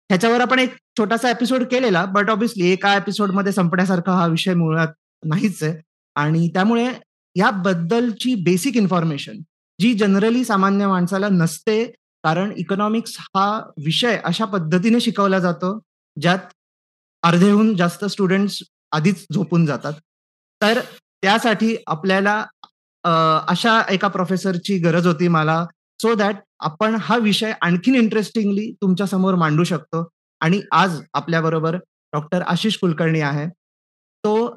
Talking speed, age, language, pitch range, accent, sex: 120 wpm, 30-49, Marathi, 165-205 Hz, native, male